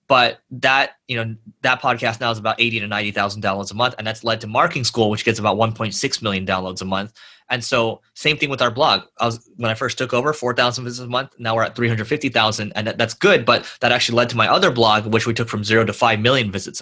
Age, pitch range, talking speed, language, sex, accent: 20-39, 110-125 Hz, 255 wpm, English, male, American